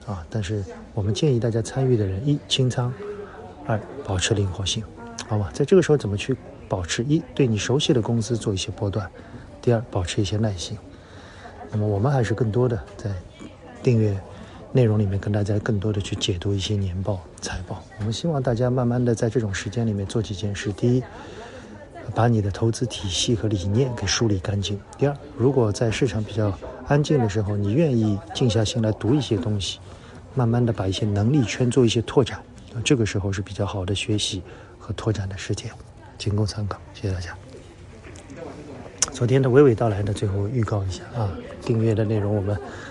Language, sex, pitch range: Chinese, male, 100-120 Hz